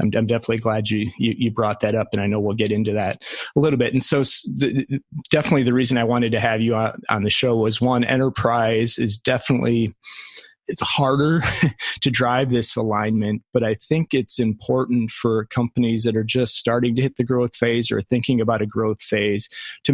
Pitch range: 110-125 Hz